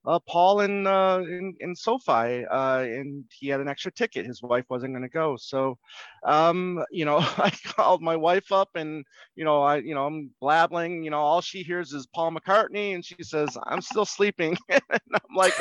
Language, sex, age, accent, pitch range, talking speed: English, male, 30-49, American, 135-175 Hz, 210 wpm